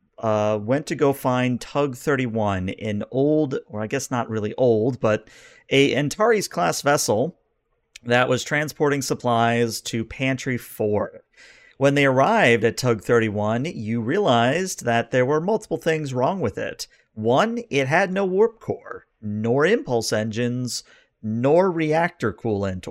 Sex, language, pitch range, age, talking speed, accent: male, English, 115-145 Hz, 40-59, 135 wpm, American